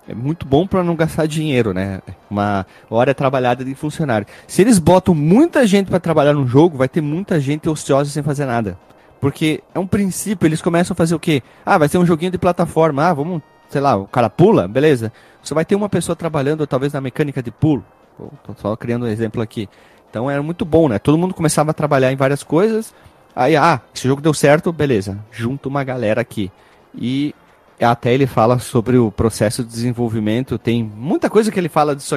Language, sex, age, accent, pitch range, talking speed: Portuguese, male, 30-49, Brazilian, 120-165 Hz, 210 wpm